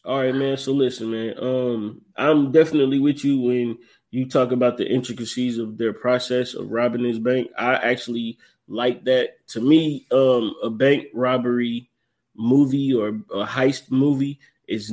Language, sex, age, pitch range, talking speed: English, male, 20-39, 115-135 Hz, 160 wpm